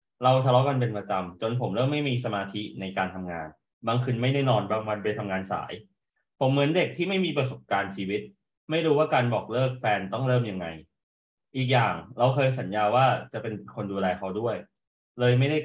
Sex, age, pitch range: male, 20-39, 100-130 Hz